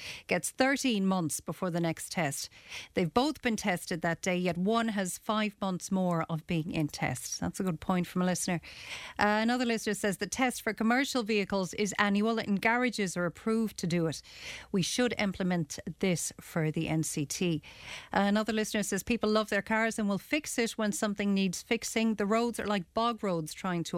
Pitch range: 180-225 Hz